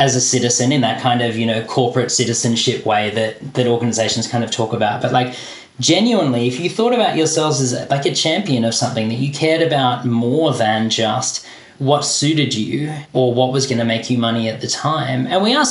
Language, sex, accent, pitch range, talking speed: English, male, Australian, 120-140 Hz, 220 wpm